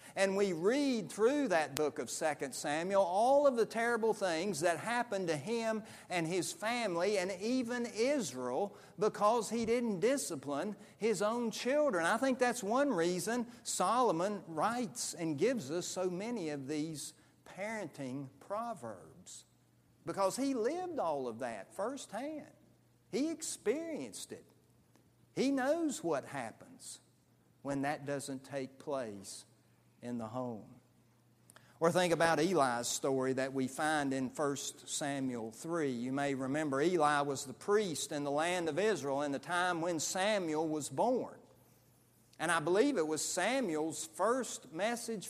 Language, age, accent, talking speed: English, 50-69, American, 145 wpm